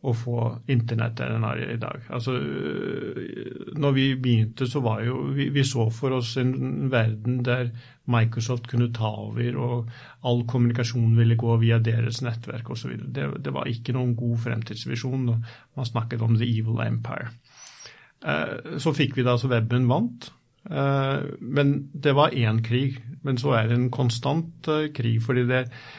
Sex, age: male, 50-69